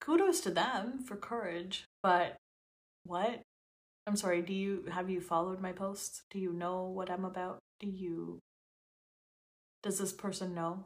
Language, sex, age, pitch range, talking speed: English, female, 20-39, 185-290 Hz, 155 wpm